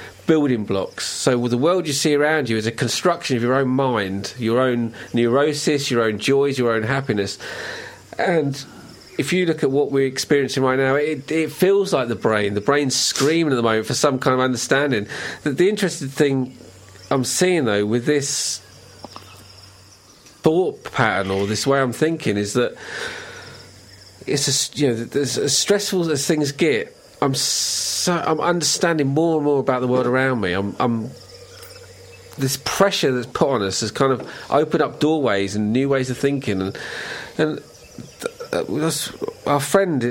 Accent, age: British, 40-59